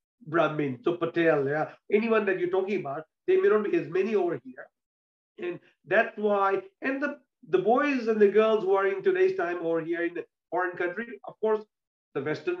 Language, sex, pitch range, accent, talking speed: Hindi, male, 170-255 Hz, native, 190 wpm